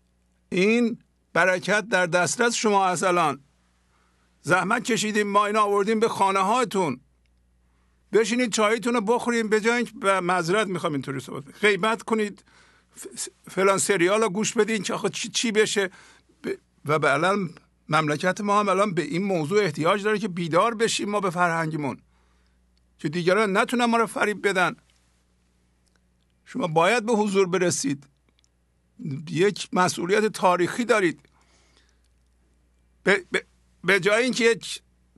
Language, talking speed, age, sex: English, 125 wpm, 50-69, male